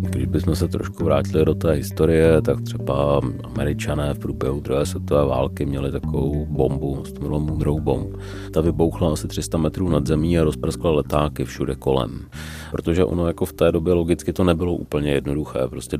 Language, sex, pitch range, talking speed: Czech, male, 70-80 Hz, 170 wpm